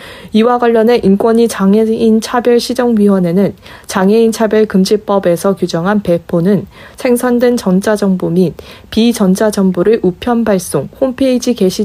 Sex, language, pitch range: female, Korean, 190-230 Hz